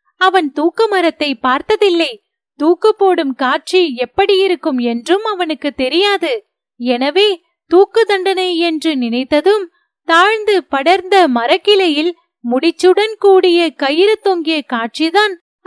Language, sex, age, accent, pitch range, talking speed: Tamil, female, 30-49, native, 305-390 Hz, 75 wpm